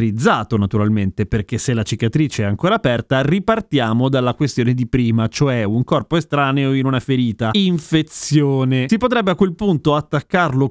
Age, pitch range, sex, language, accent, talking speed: 30-49, 120-165 Hz, male, Italian, native, 150 wpm